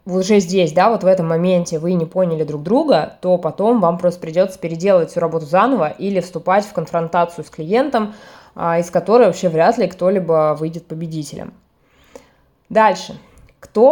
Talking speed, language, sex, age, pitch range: 160 wpm, Russian, female, 20-39, 165-215 Hz